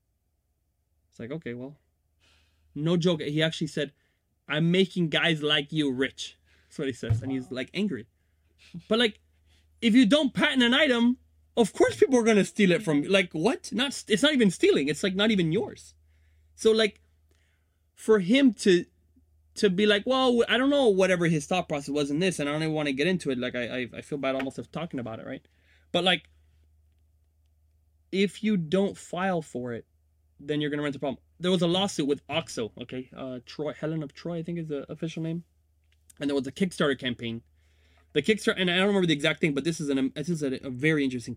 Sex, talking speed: male, 220 wpm